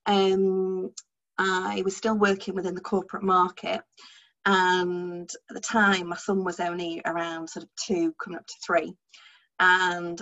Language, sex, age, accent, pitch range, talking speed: English, female, 30-49, British, 185-230 Hz, 155 wpm